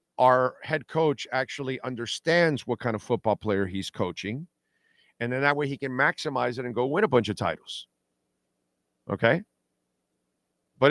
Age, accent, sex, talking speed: 50-69, American, male, 160 wpm